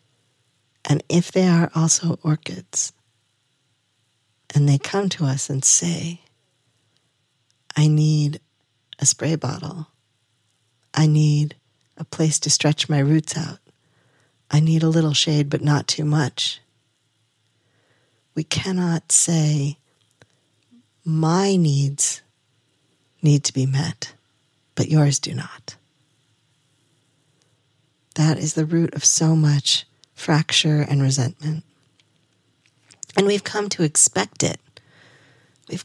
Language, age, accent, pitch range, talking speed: English, 40-59, American, 130-155 Hz, 110 wpm